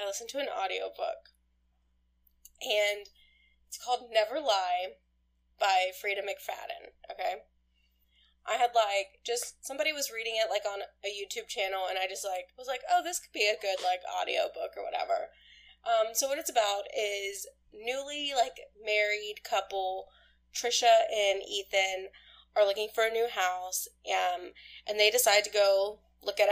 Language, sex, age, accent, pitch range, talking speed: English, female, 20-39, American, 180-230 Hz, 160 wpm